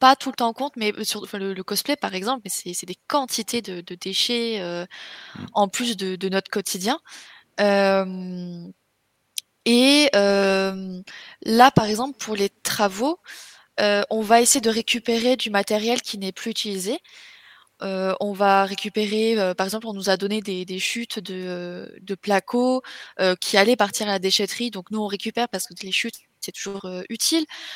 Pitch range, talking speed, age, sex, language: 195-235 Hz, 185 wpm, 20-39, female, French